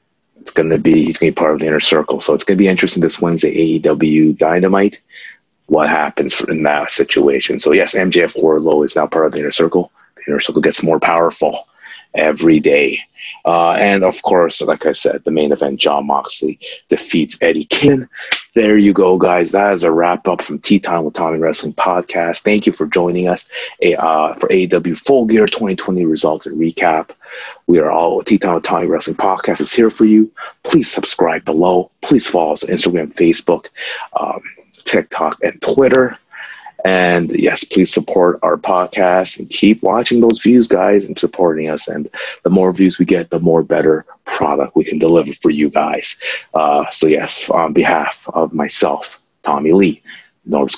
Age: 30-49